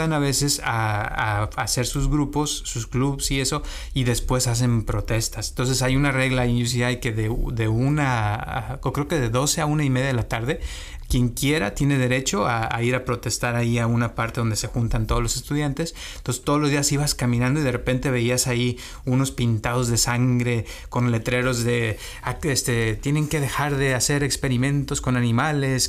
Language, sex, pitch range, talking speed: Spanish, male, 120-140 Hz, 190 wpm